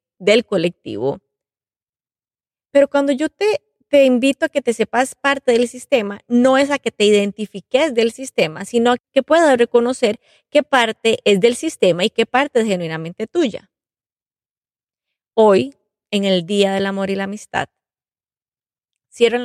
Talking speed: 150 wpm